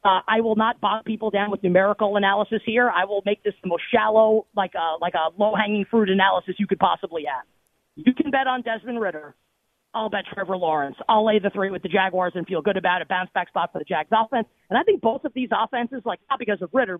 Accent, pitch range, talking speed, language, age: American, 190-230 Hz, 245 wpm, English, 40-59